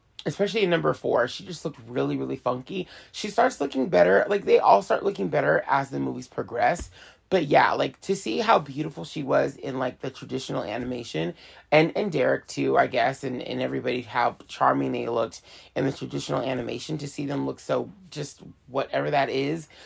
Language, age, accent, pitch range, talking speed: English, 30-49, American, 105-170 Hz, 195 wpm